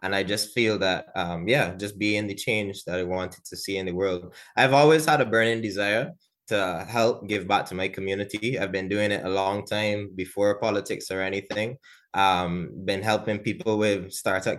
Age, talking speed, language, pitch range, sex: 20-39, 200 wpm, English, 95-115 Hz, male